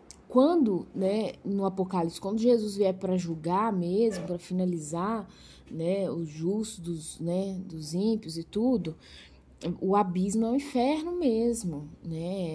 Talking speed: 140 wpm